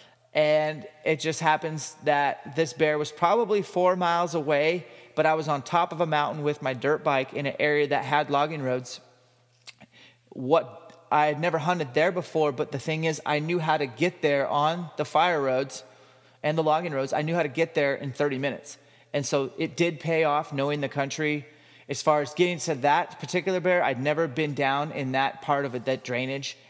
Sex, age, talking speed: male, 30-49, 205 wpm